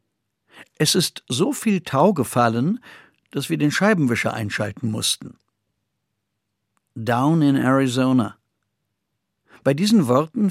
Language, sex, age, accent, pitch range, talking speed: German, male, 50-69, German, 120-160 Hz, 105 wpm